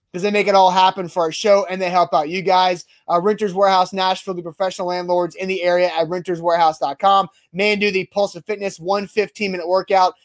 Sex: male